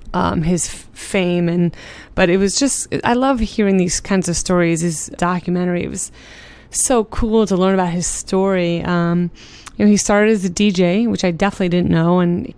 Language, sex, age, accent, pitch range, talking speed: English, female, 20-39, American, 175-200 Hz, 195 wpm